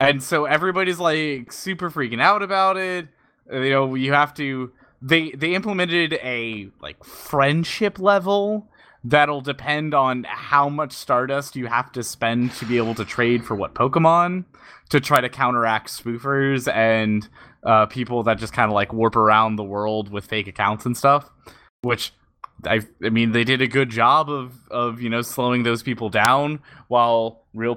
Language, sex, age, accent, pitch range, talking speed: English, male, 20-39, American, 115-140 Hz, 175 wpm